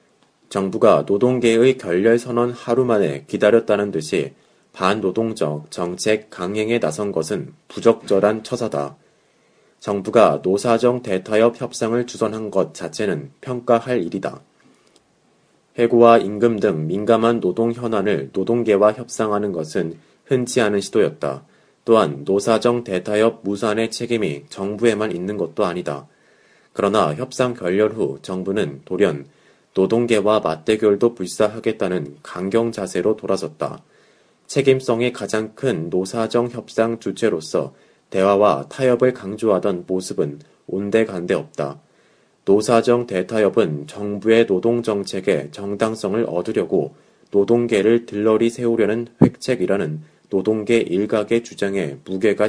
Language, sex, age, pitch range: Korean, male, 30-49, 95-115 Hz